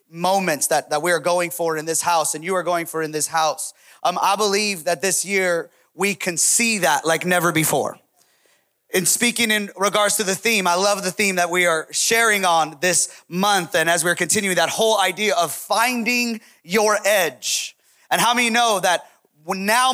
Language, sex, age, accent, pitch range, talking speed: English, male, 30-49, American, 185-245 Hz, 200 wpm